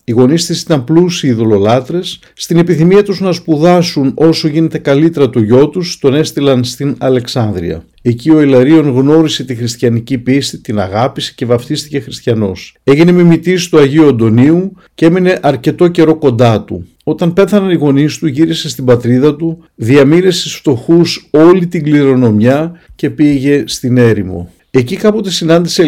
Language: Greek